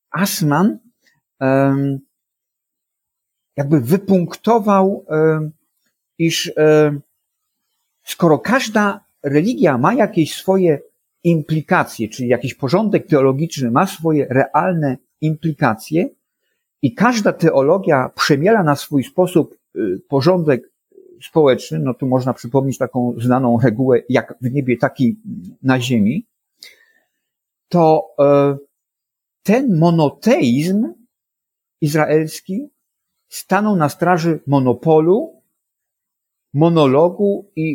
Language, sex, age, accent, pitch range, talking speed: Polish, male, 50-69, native, 135-185 Hz, 80 wpm